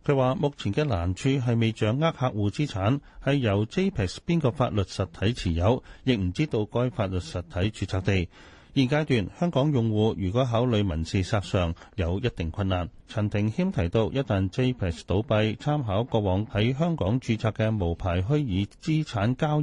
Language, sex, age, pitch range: Chinese, male, 30-49, 95-130 Hz